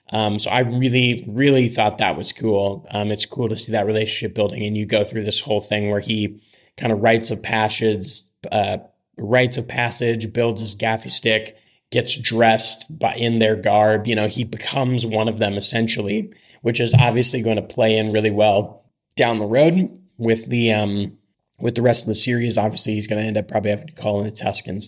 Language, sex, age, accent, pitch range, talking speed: English, male, 30-49, American, 105-125 Hz, 205 wpm